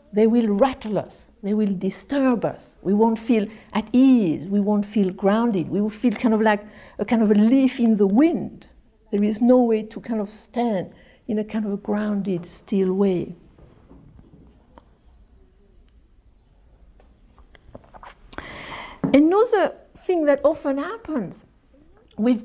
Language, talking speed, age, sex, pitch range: English, 140 wpm, 60-79, female, 215-280 Hz